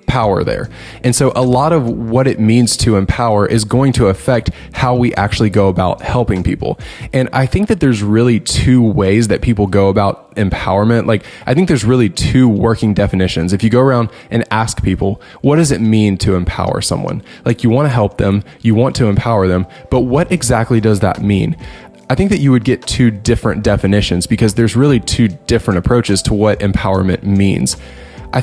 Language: English